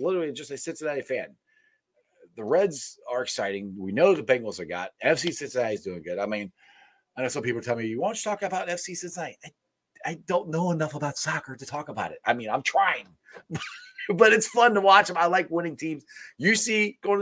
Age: 30-49